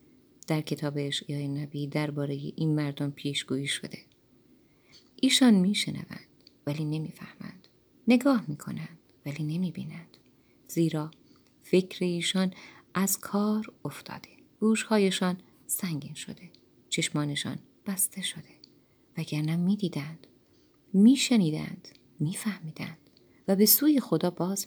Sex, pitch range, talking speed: female, 150-195 Hz, 95 wpm